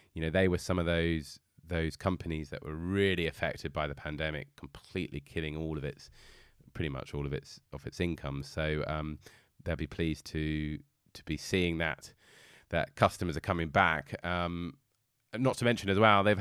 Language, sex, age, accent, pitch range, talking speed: English, male, 20-39, British, 80-105 Hz, 185 wpm